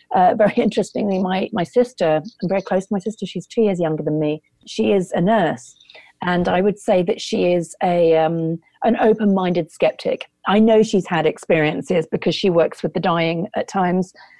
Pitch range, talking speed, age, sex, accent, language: 165-215 Hz, 195 wpm, 40-59, female, British, English